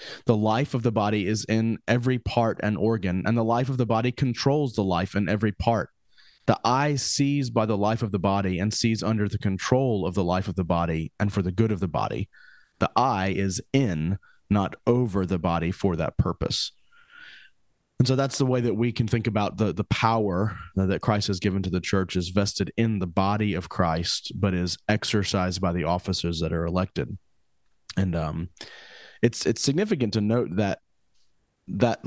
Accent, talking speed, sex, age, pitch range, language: American, 200 wpm, male, 30-49, 95-115 Hz, English